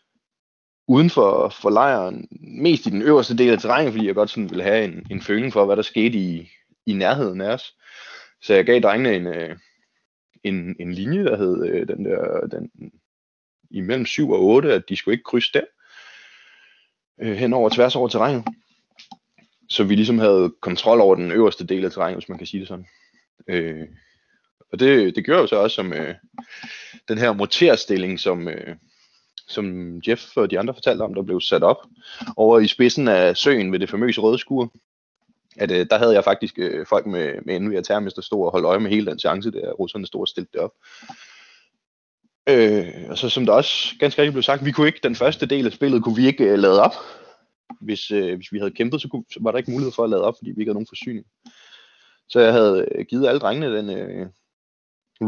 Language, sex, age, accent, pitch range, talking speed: Danish, male, 20-39, native, 100-150 Hz, 215 wpm